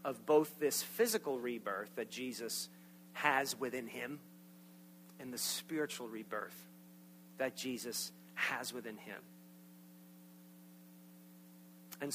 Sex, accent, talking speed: male, American, 100 wpm